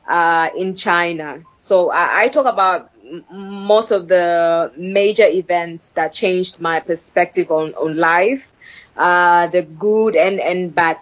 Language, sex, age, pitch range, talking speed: English, female, 20-39, 165-215 Hz, 145 wpm